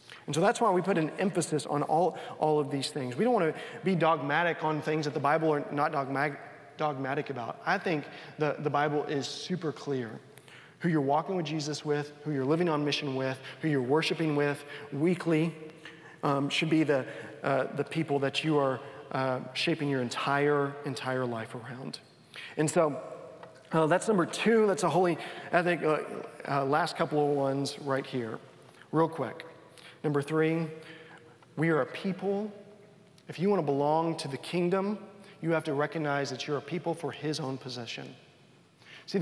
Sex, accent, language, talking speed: male, American, English, 180 wpm